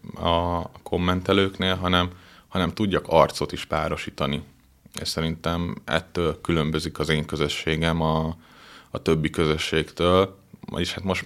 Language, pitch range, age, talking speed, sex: Hungarian, 80-90 Hz, 30-49, 115 wpm, male